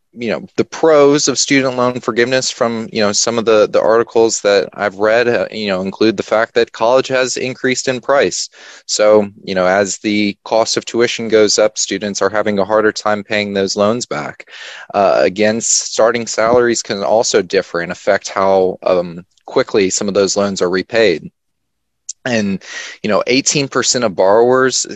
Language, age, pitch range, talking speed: English, 20-39, 100-115 Hz, 180 wpm